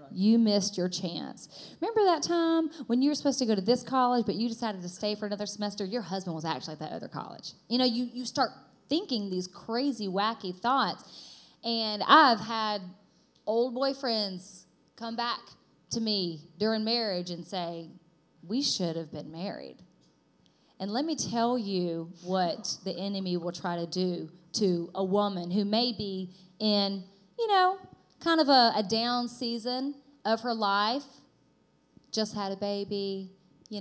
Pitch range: 185-245 Hz